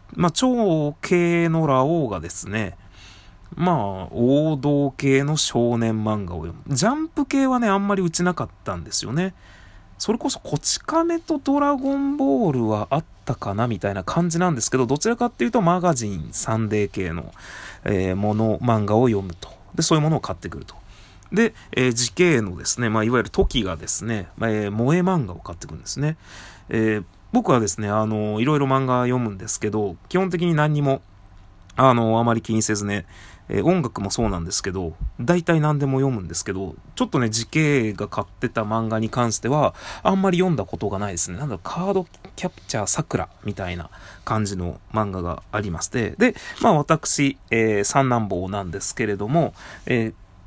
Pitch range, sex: 100-160 Hz, male